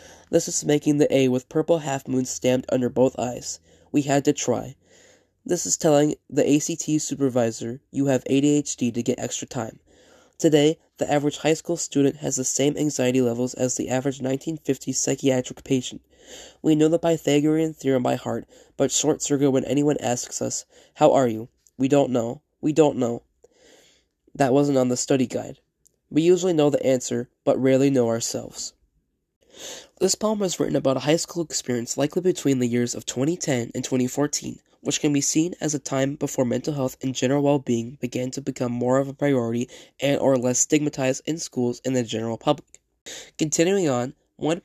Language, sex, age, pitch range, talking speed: English, male, 20-39, 125-150 Hz, 180 wpm